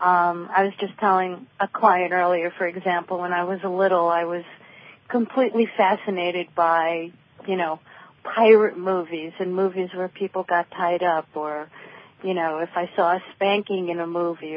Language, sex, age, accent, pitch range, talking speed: English, female, 40-59, American, 175-205 Hz, 175 wpm